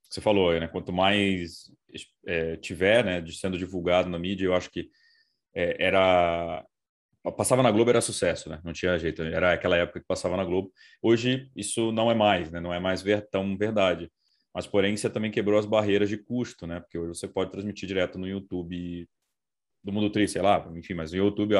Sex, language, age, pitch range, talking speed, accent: male, Portuguese, 20-39, 90-105 Hz, 205 wpm, Brazilian